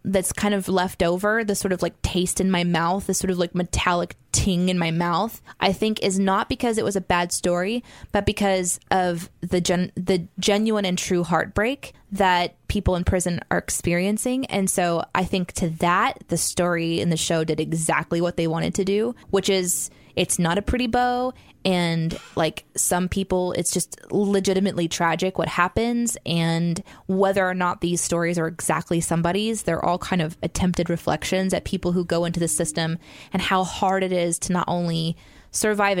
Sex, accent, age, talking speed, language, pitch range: female, American, 20-39, 190 wpm, English, 170-200 Hz